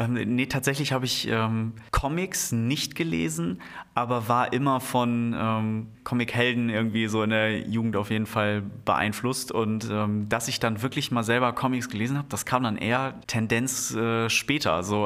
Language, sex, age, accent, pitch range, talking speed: German, male, 30-49, German, 105-125 Hz, 165 wpm